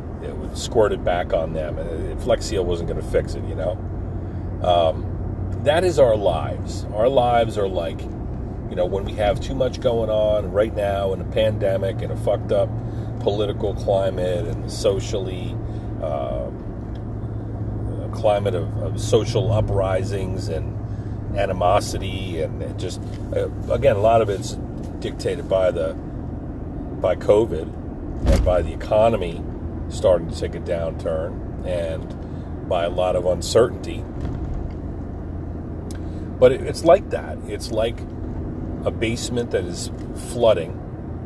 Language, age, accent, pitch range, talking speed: English, 40-59, American, 85-110 Hz, 135 wpm